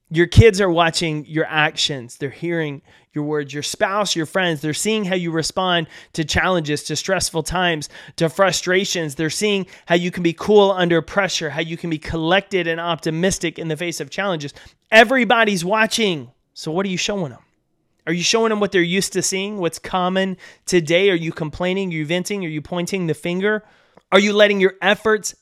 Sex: male